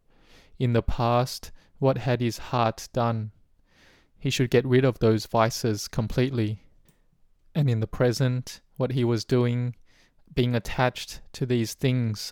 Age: 20-39